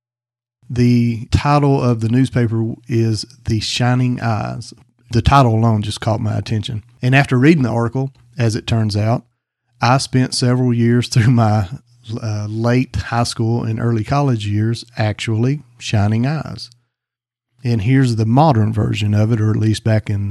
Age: 40-59